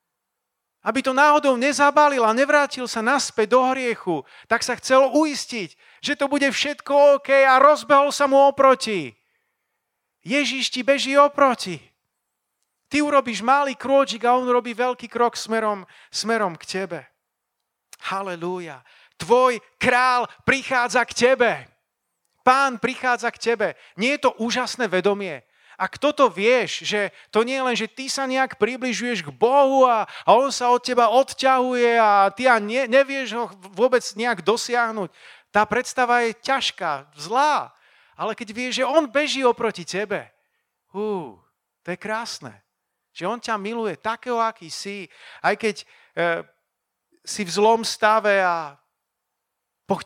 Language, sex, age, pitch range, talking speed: Slovak, male, 40-59, 205-265 Hz, 145 wpm